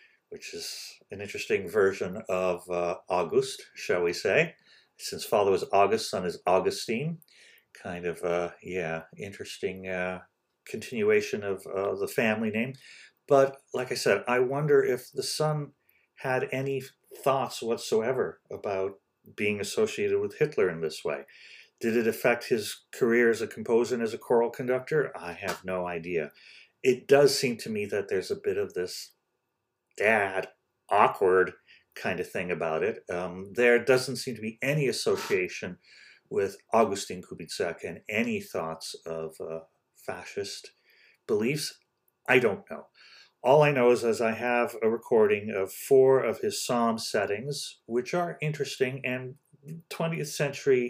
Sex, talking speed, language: male, 150 wpm, English